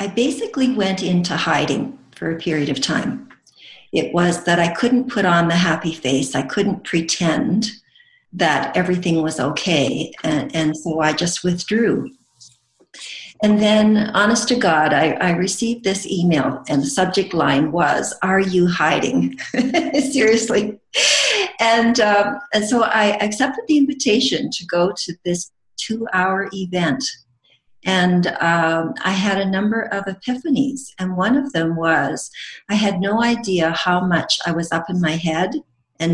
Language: English